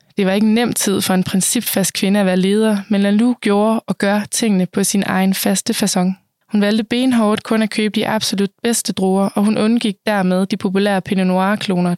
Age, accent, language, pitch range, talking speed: 20-39, native, Danish, 185-215 Hz, 205 wpm